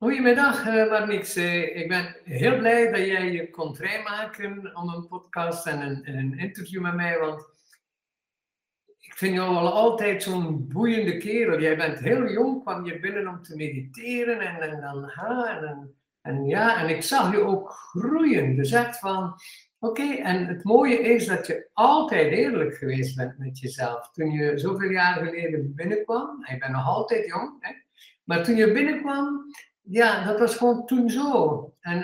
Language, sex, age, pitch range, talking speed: Dutch, male, 60-79, 160-220 Hz, 170 wpm